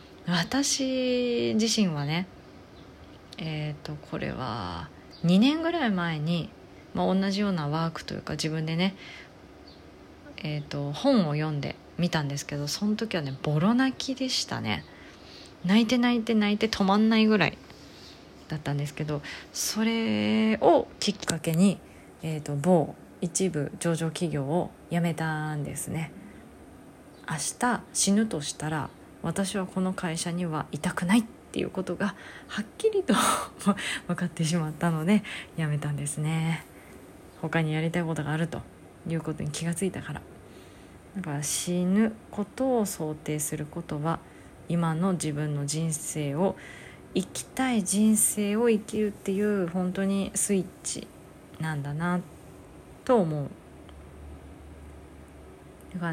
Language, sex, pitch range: Japanese, female, 150-200 Hz